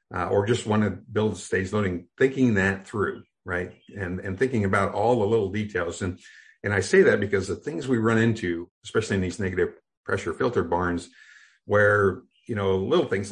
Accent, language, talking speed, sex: American, English, 195 wpm, male